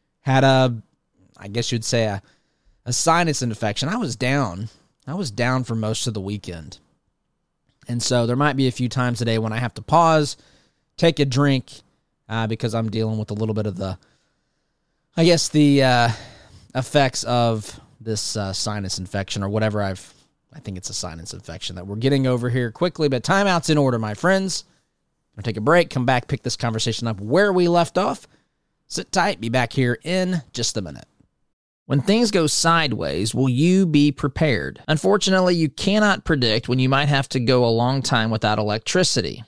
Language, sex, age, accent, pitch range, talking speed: English, male, 30-49, American, 115-150 Hz, 195 wpm